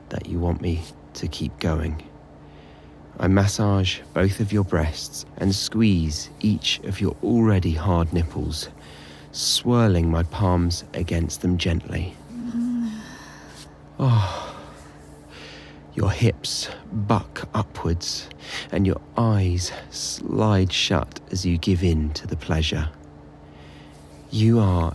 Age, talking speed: 30-49, 110 wpm